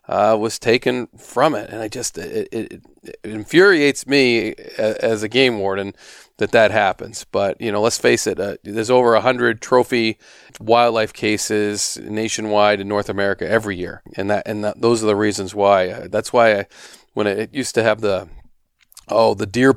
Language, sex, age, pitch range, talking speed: English, male, 40-59, 105-125 Hz, 195 wpm